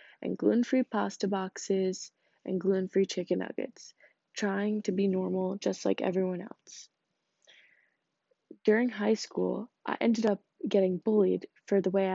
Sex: female